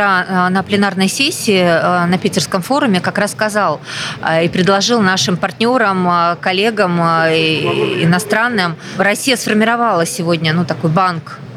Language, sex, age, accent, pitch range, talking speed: Russian, female, 20-39, native, 165-200 Hz, 100 wpm